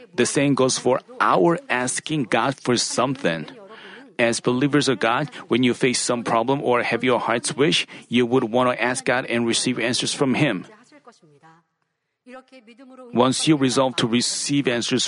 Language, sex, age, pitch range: Korean, male, 40-59, 130-195 Hz